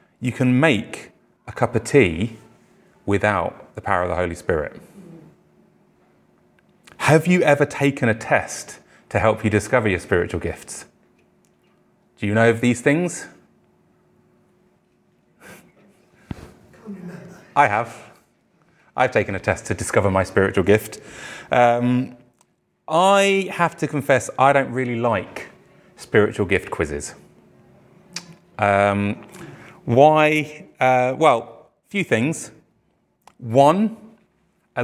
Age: 30-49